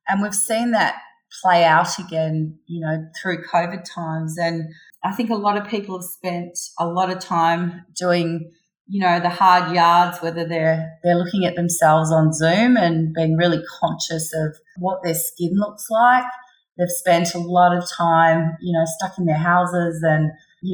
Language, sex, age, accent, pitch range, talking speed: English, female, 30-49, Australian, 165-185 Hz, 180 wpm